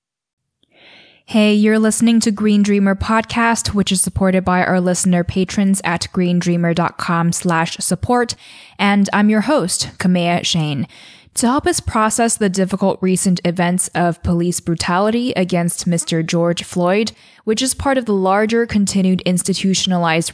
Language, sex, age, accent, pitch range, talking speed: English, female, 10-29, American, 170-210 Hz, 135 wpm